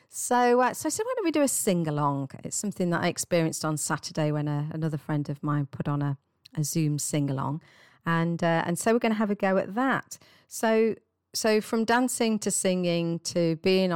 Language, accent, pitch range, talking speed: English, British, 150-185 Hz, 225 wpm